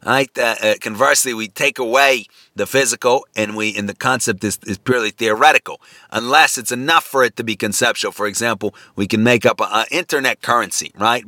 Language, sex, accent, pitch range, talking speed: English, male, American, 105-125 Hz, 190 wpm